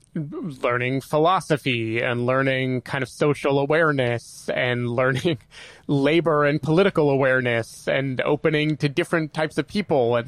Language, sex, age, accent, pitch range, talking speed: English, male, 30-49, American, 120-150 Hz, 130 wpm